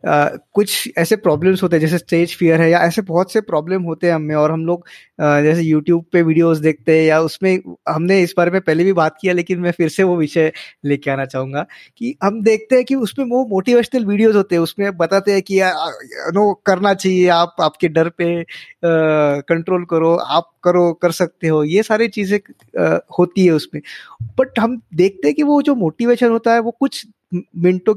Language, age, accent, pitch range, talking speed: Hindi, 20-39, native, 165-220 Hz, 205 wpm